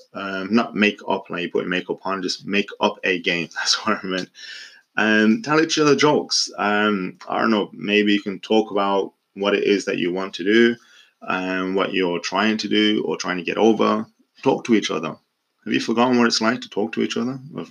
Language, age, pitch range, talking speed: English, 20-39, 95-110 Hz, 230 wpm